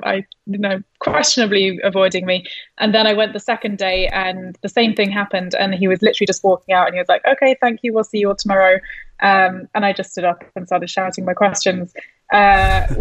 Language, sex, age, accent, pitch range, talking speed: English, female, 20-39, British, 185-210 Hz, 225 wpm